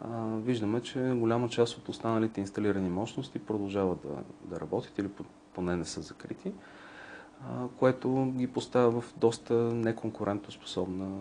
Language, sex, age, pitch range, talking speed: Bulgarian, male, 40-59, 100-125 Hz, 125 wpm